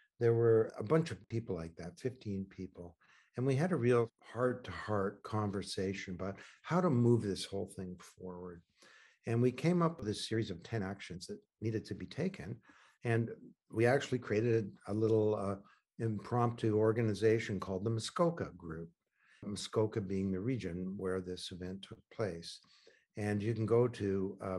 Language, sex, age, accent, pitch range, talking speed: English, male, 60-79, American, 95-115 Hz, 165 wpm